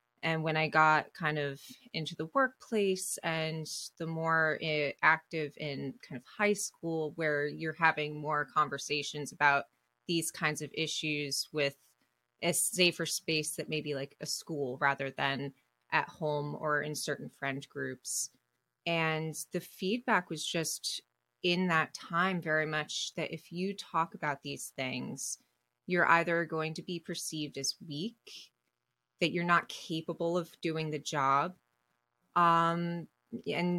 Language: English